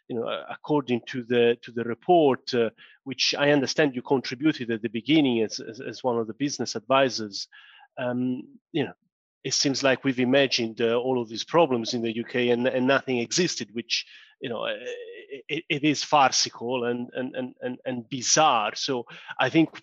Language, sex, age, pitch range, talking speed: English, male, 30-49, 120-145 Hz, 185 wpm